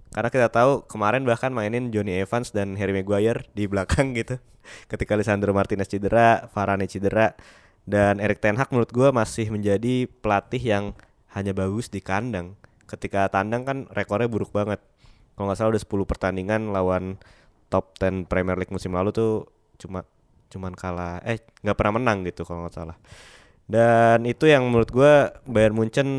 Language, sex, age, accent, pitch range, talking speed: Indonesian, male, 20-39, native, 95-110 Hz, 165 wpm